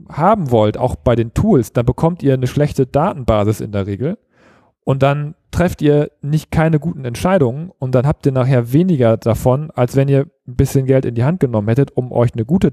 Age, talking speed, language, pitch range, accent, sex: 40-59, 210 wpm, German, 115-145 Hz, German, male